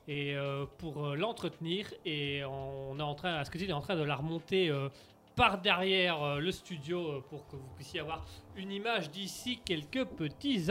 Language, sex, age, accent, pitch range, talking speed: French, male, 30-49, French, 155-200 Hz, 215 wpm